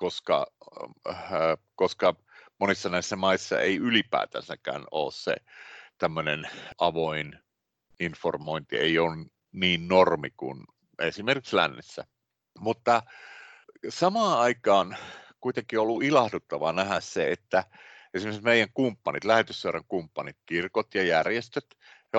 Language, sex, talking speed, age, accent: Finnish, male, 100 wpm, 50-69, native